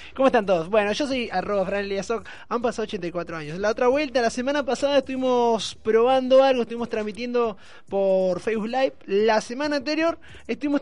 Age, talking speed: 20-39, 160 wpm